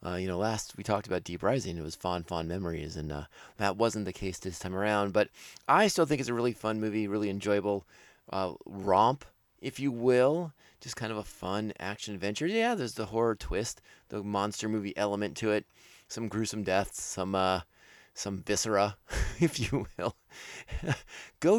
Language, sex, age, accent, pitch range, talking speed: English, male, 20-39, American, 90-120 Hz, 185 wpm